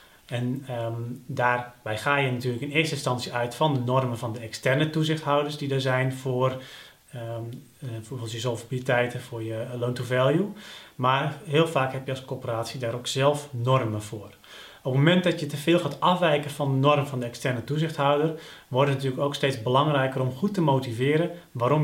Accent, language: Dutch, Dutch